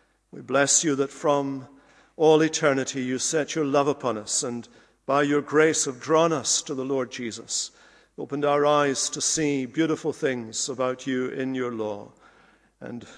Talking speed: 170 wpm